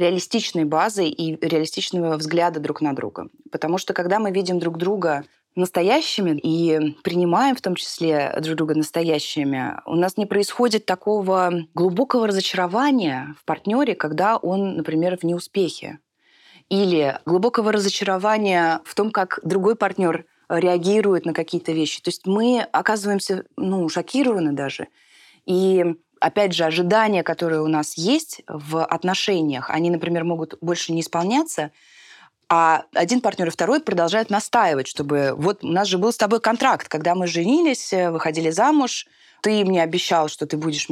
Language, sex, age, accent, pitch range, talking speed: Russian, female, 20-39, native, 160-210 Hz, 145 wpm